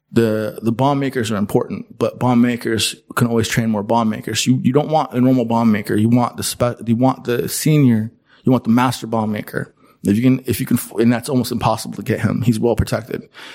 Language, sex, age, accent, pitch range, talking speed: Croatian, male, 20-39, American, 110-130 Hz, 235 wpm